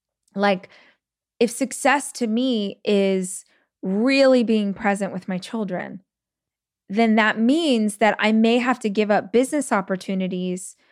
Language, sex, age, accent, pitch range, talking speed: English, female, 20-39, American, 195-230 Hz, 130 wpm